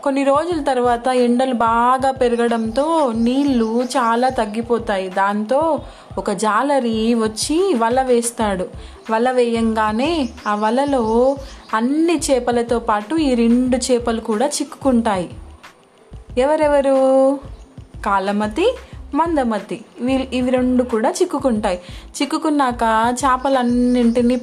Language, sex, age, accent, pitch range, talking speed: Telugu, female, 20-39, native, 230-270 Hz, 90 wpm